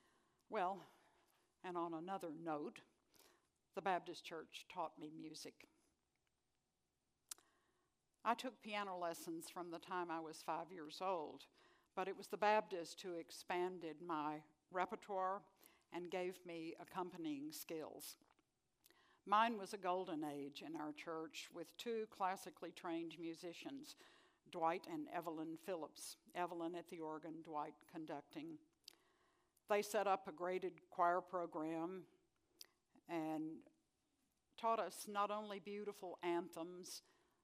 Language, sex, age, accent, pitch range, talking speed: English, female, 60-79, American, 165-220 Hz, 120 wpm